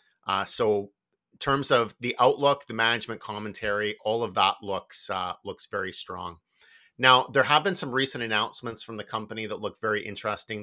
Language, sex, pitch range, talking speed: English, male, 100-115 Hz, 180 wpm